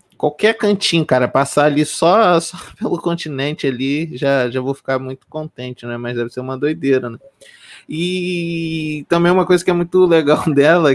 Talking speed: 175 wpm